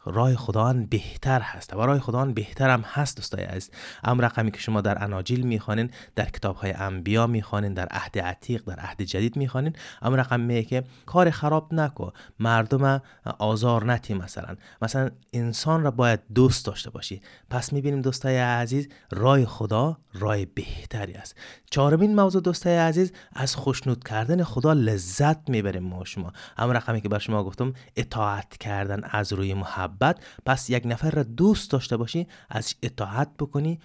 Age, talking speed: 30-49, 155 wpm